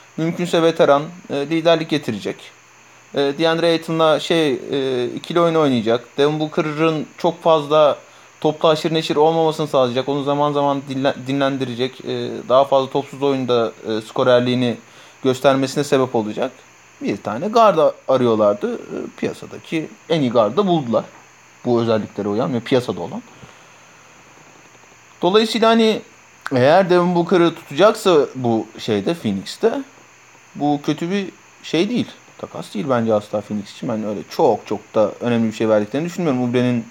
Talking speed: 125 wpm